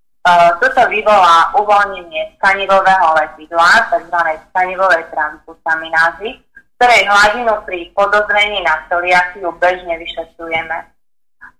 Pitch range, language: 170-200 Hz, Slovak